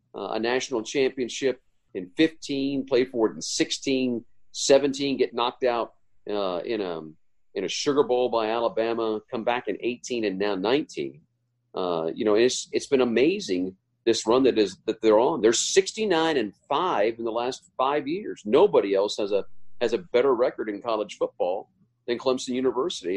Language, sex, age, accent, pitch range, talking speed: English, male, 40-59, American, 110-155 Hz, 175 wpm